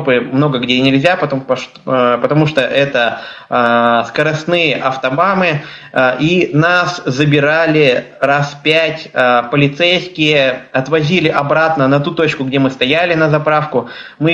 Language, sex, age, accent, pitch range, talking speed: Russian, male, 20-39, native, 135-165 Hz, 105 wpm